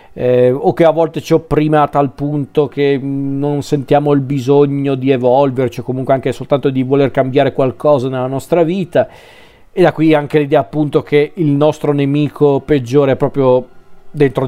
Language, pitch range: Italian, 125-150 Hz